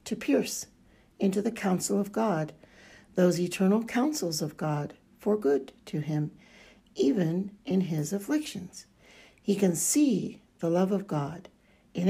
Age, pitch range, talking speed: 60-79, 170-225 Hz, 140 wpm